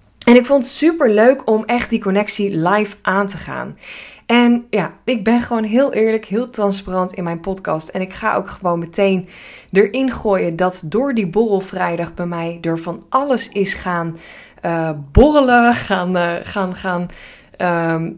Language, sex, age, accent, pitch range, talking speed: Dutch, female, 20-39, Dutch, 180-230 Hz, 175 wpm